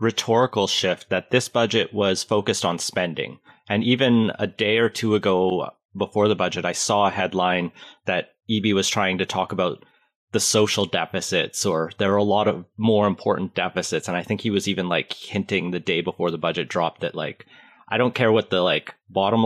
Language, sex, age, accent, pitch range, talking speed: English, male, 30-49, American, 95-115 Hz, 200 wpm